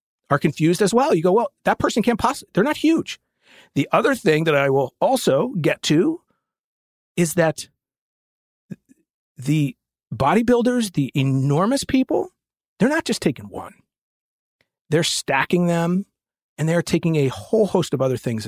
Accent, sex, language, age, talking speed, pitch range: American, male, English, 40-59, 155 wpm, 145-225 Hz